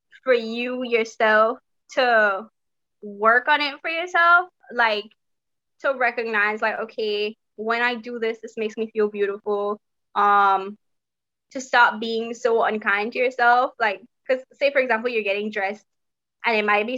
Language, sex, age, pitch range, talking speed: English, female, 20-39, 220-270 Hz, 150 wpm